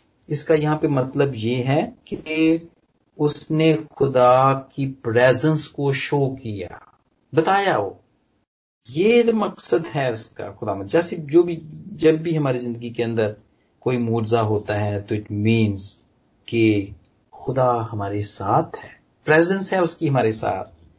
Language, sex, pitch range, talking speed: Punjabi, male, 115-180 Hz, 135 wpm